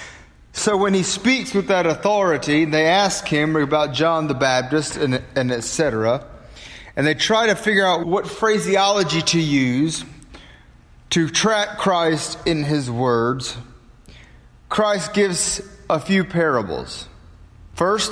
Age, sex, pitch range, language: 30-49, male, 120-185 Hz, English